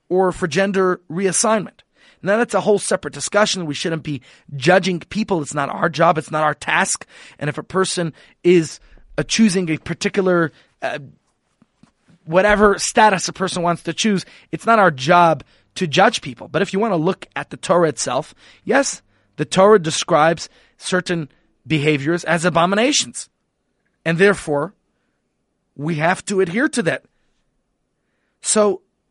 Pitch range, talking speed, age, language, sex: 145-190 Hz, 150 wpm, 30-49, English, male